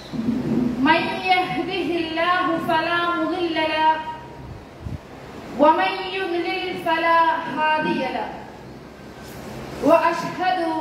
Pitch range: 320-355 Hz